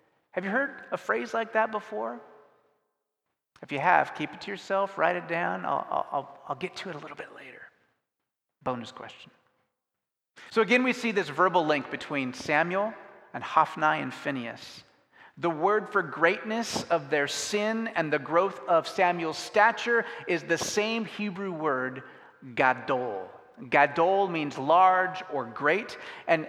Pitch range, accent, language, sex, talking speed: 145-195 Hz, American, English, male, 155 wpm